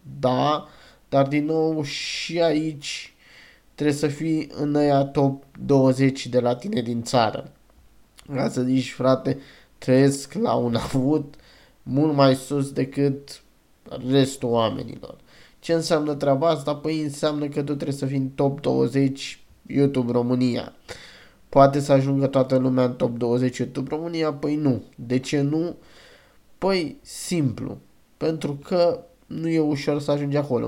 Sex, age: male, 20-39